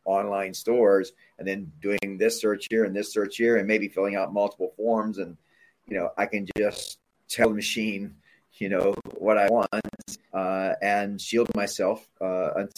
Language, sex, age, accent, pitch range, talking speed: English, male, 40-59, American, 95-115 Hz, 175 wpm